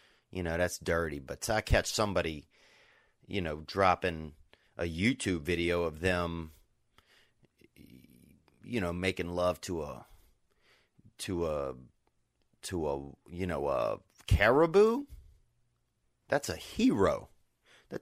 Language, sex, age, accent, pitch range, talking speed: English, male, 30-49, American, 85-110 Hz, 115 wpm